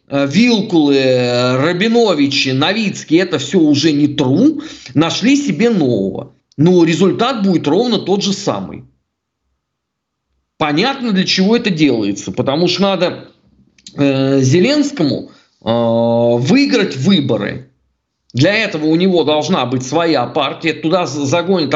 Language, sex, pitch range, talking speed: Russian, male, 140-200 Hz, 110 wpm